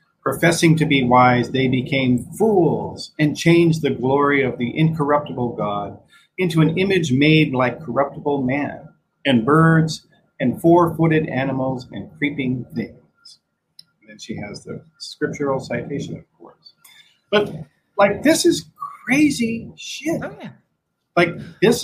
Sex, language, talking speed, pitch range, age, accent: male, English, 130 wpm, 125-170 Hz, 40-59, American